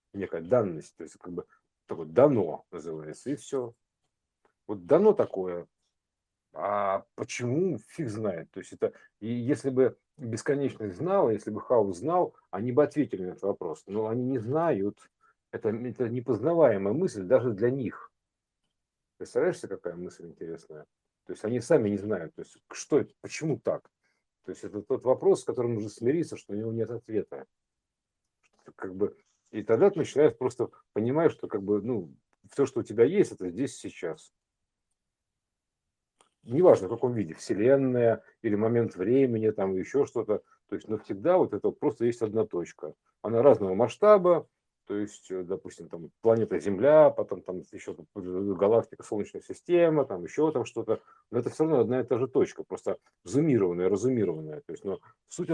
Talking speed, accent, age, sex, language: 165 wpm, native, 50-69, male, Russian